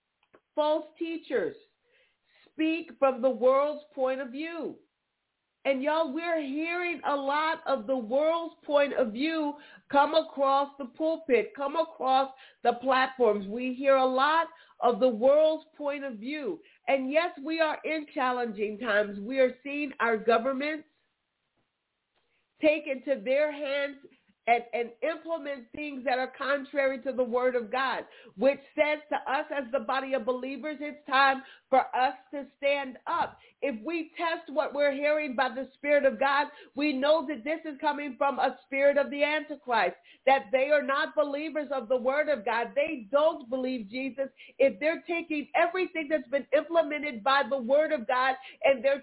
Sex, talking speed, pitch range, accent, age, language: female, 165 wpm, 265-310 Hz, American, 50-69, English